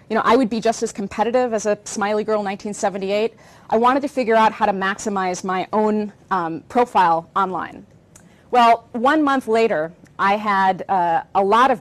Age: 40-59